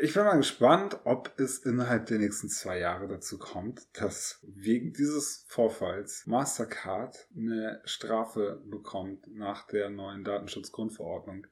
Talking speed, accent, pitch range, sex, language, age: 130 wpm, German, 105-120 Hz, male, German, 20-39